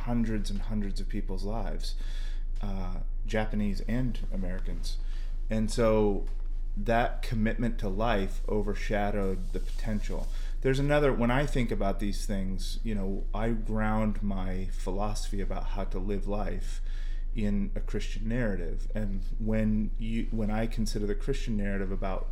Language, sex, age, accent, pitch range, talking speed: English, male, 30-49, American, 100-115 Hz, 140 wpm